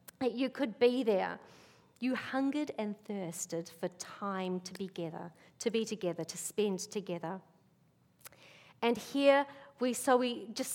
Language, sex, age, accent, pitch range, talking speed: English, female, 40-59, Australian, 190-250 Hz, 140 wpm